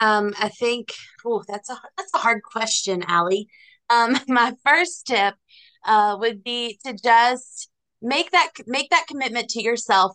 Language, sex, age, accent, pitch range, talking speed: English, female, 20-39, American, 185-235 Hz, 160 wpm